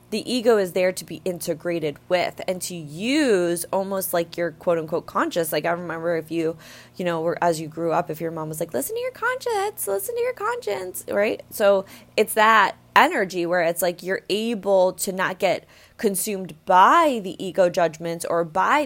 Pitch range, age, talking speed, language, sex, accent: 170-195 Hz, 20-39, 190 wpm, English, female, American